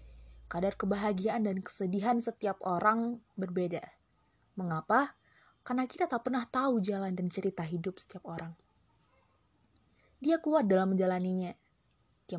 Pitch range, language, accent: 175-230 Hz, Indonesian, native